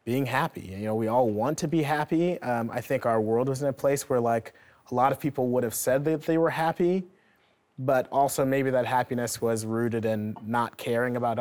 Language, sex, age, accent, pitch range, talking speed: English, male, 30-49, American, 110-140 Hz, 225 wpm